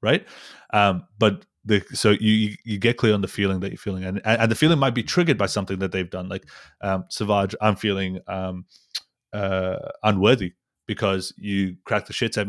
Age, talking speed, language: 30-49, 195 wpm, English